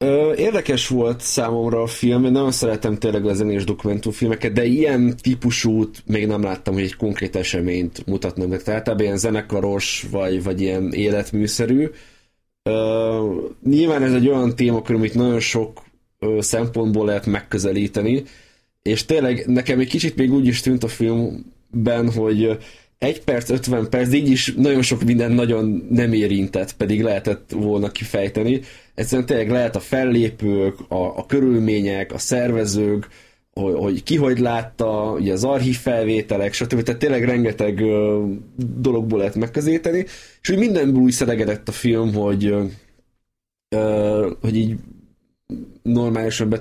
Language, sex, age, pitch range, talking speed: Hungarian, male, 20-39, 105-125 Hz, 140 wpm